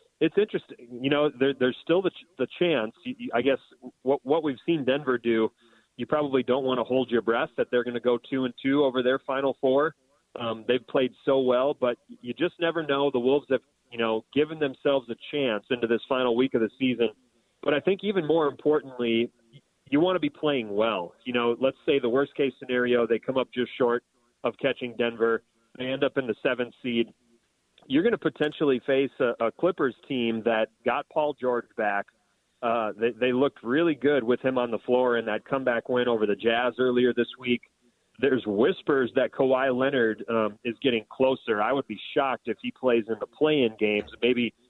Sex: male